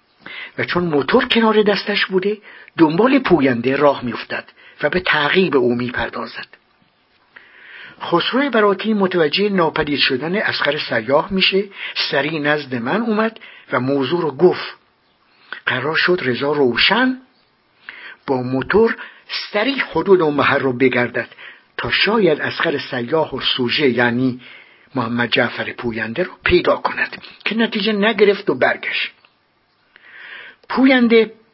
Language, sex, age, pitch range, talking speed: English, male, 60-79, 140-200 Hz, 120 wpm